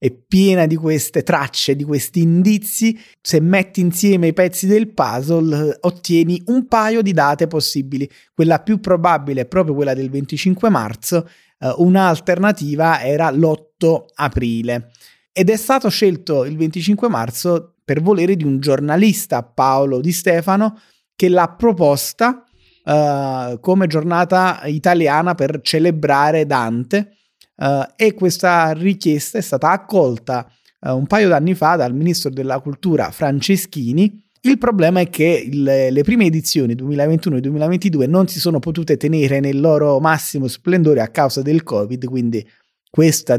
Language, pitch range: Italian, 135-180 Hz